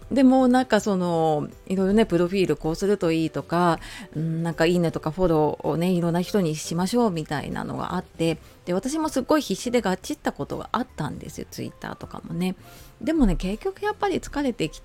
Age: 30-49